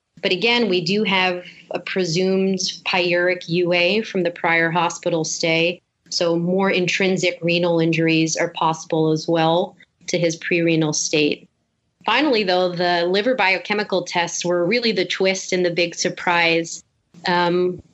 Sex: female